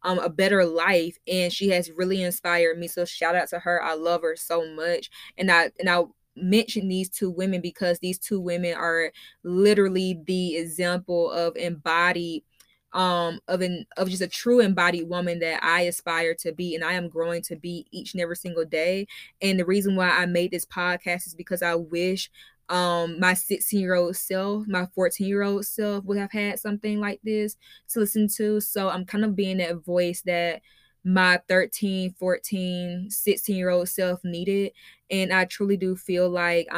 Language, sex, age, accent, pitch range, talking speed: English, female, 10-29, American, 175-190 Hz, 190 wpm